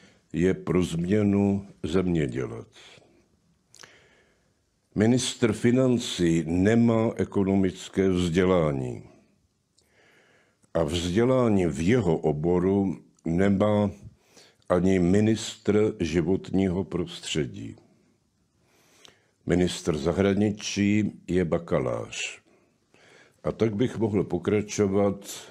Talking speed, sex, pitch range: 70 wpm, male, 85-100 Hz